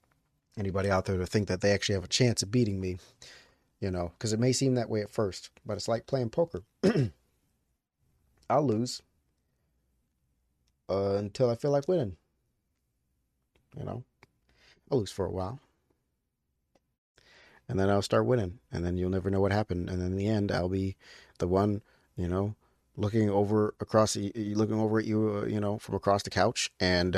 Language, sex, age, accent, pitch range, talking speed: English, male, 30-49, American, 90-110 Hz, 180 wpm